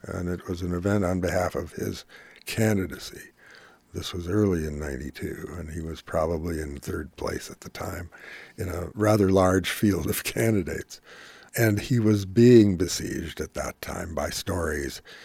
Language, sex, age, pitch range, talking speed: English, male, 60-79, 85-105 Hz, 165 wpm